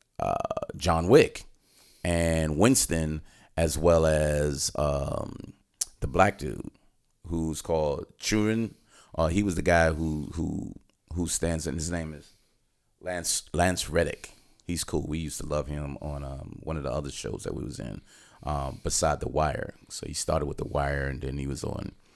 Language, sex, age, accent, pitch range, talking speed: English, male, 30-49, American, 80-95 Hz, 175 wpm